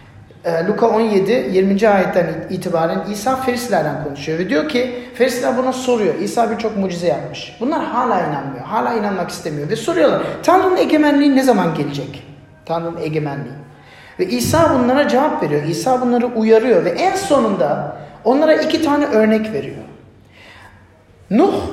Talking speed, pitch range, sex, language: 140 wpm, 180-260 Hz, male, Turkish